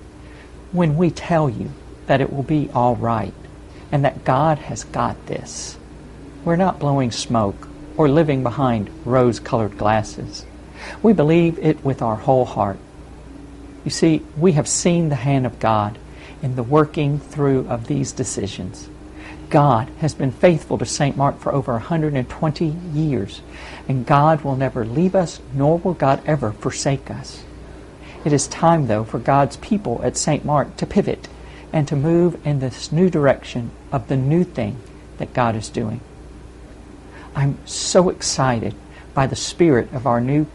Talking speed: 160 wpm